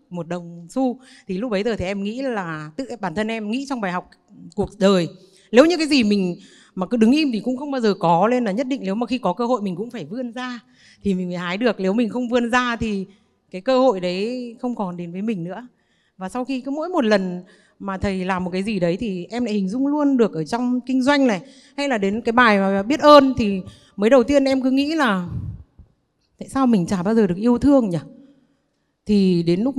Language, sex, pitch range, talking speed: Vietnamese, female, 190-250 Hz, 255 wpm